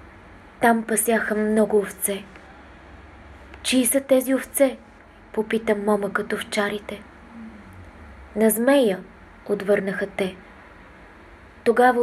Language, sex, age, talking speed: Bulgarian, female, 20-39, 80 wpm